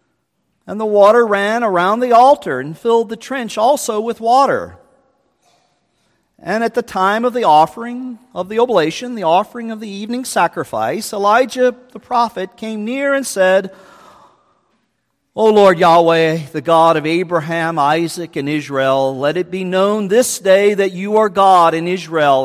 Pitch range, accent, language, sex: 175-220 Hz, American, English, male